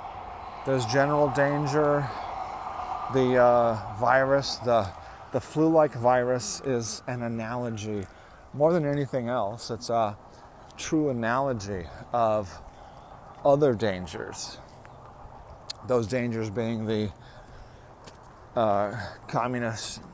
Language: English